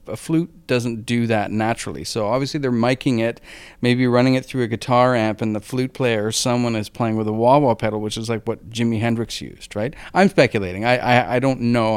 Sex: male